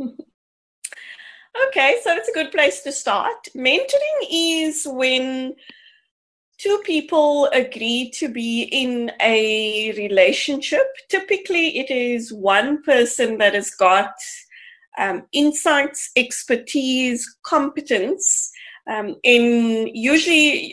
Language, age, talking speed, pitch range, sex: English, 30-49, 100 wpm, 220-295 Hz, female